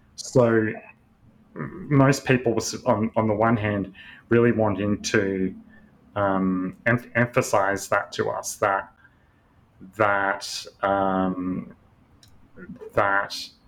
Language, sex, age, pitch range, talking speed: English, male, 30-49, 100-120 Hz, 90 wpm